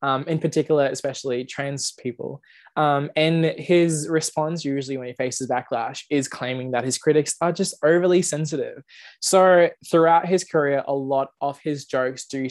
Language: English